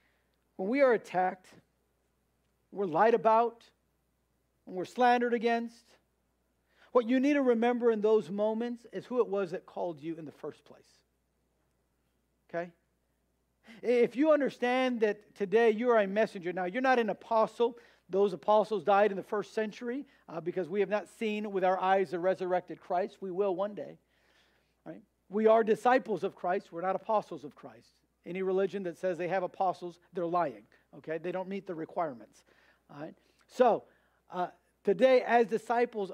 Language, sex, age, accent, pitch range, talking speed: English, male, 50-69, American, 180-225 Hz, 165 wpm